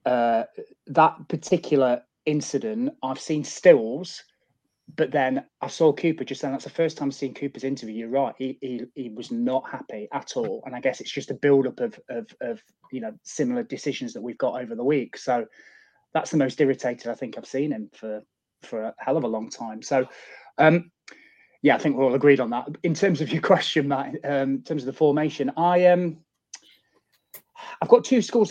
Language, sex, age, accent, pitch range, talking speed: English, male, 30-49, British, 130-175 Hz, 205 wpm